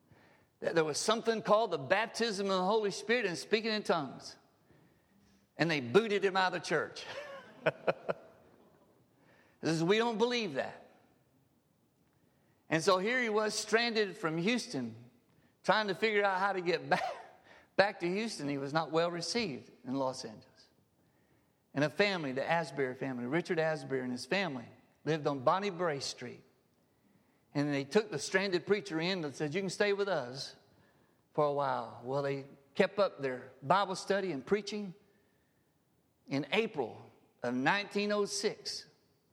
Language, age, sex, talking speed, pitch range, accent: English, 50-69, male, 155 wpm, 150-205 Hz, American